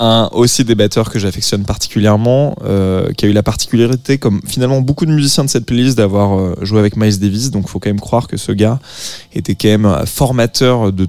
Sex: male